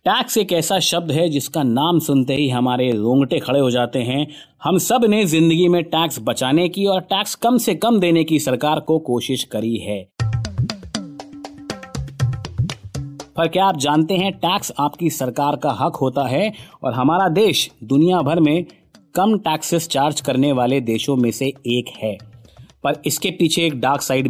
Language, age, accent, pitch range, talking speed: Hindi, 30-49, native, 130-175 Hz, 170 wpm